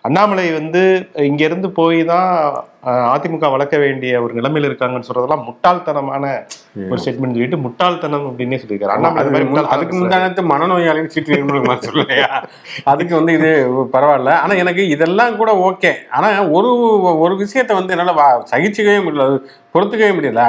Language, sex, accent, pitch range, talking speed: English, male, Indian, 135-175 Hz, 65 wpm